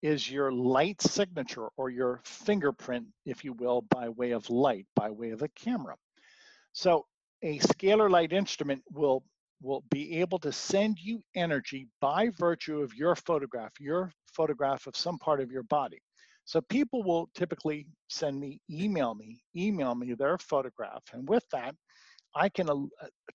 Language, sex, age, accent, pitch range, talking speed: English, male, 50-69, American, 135-190 Hz, 160 wpm